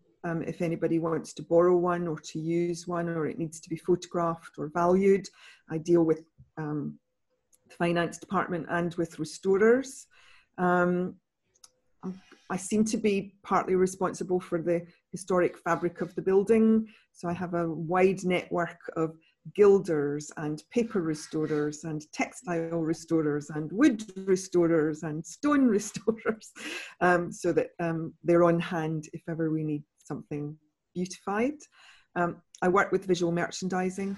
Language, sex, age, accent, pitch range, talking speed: English, female, 40-59, British, 165-195 Hz, 145 wpm